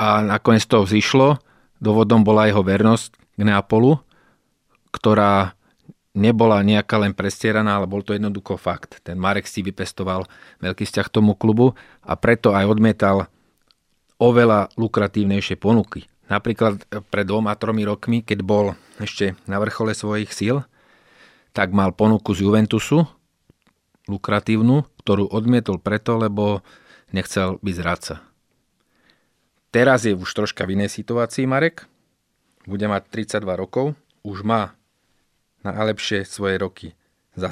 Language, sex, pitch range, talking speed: Slovak, male, 100-115 Hz, 125 wpm